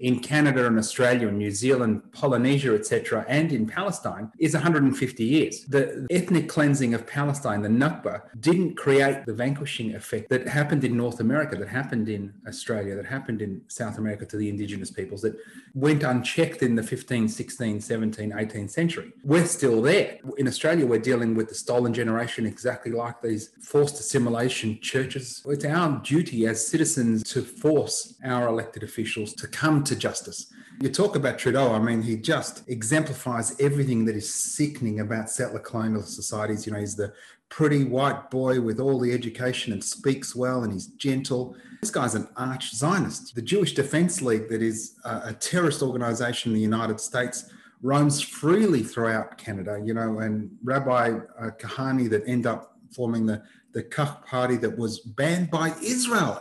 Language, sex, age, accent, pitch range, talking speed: English, male, 30-49, Australian, 110-140 Hz, 170 wpm